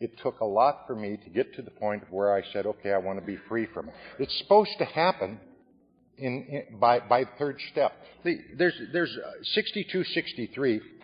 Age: 50-69